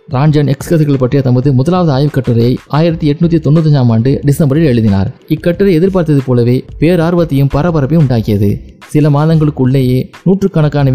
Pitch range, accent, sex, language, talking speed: 130-165 Hz, native, male, Tamil, 125 wpm